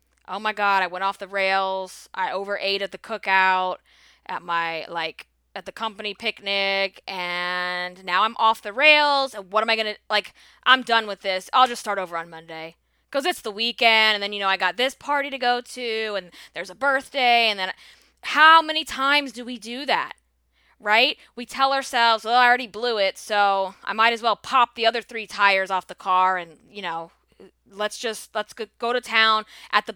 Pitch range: 190-255 Hz